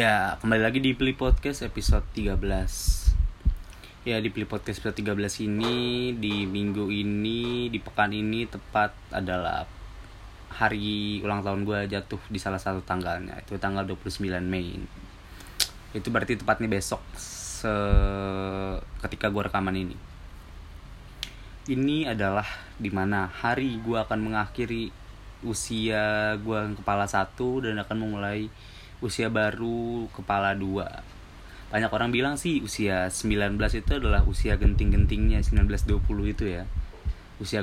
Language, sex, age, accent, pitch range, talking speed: Indonesian, male, 20-39, native, 95-110 Hz, 125 wpm